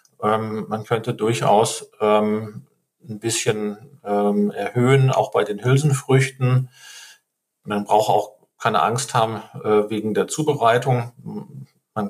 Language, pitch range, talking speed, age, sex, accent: German, 110-130 Hz, 100 wpm, 40-59, male, German